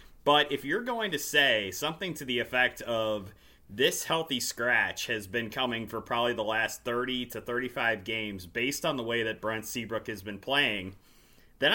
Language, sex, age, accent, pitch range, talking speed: English, male, 30-49, American, 110-135 Hz, 185 wpm